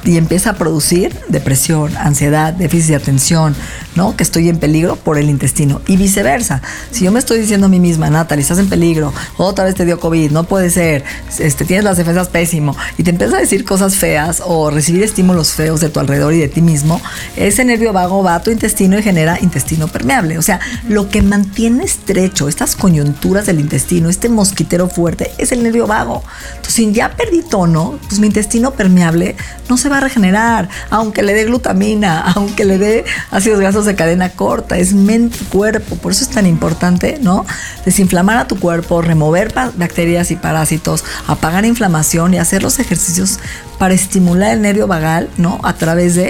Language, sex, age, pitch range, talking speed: Spanish, female, 50-69, 165-200 Hz, 190 wpm